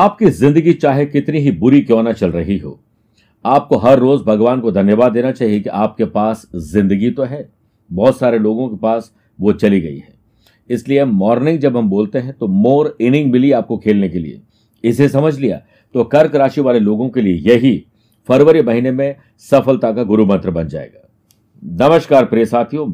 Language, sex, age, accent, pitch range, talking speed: Hindi, male, 60-79, native, 110-140 Hz, 185 wpm